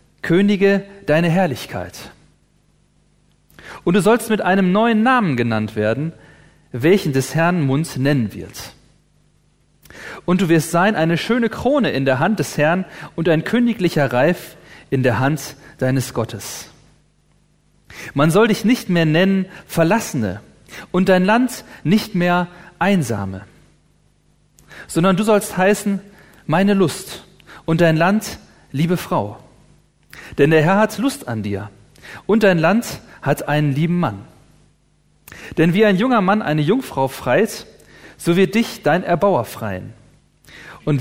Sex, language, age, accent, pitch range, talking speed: male, Polish, 40-59, German, 140-195 Hz, 135 wpm